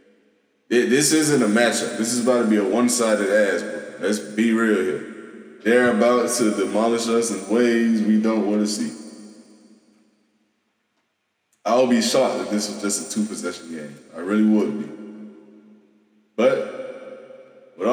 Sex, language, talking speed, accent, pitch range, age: male, English, 145 wpm, American, 105-120 Hz, 20-39